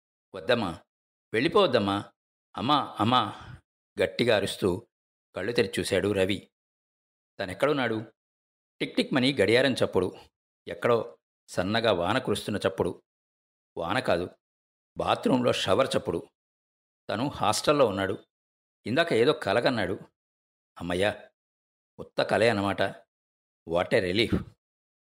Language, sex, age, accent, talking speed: Telugu, male, 50-69, native, 90 wpm